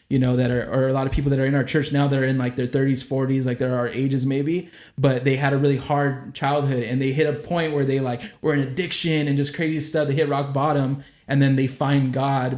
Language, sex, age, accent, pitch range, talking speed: English, male, 20-39, American, 125-140 Hz, 275 wpm